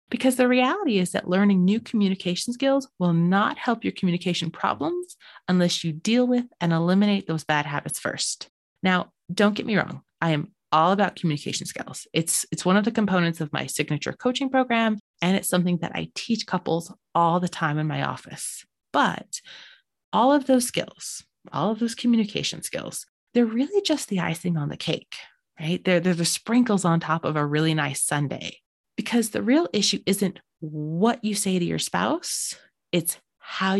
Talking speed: 185 wpm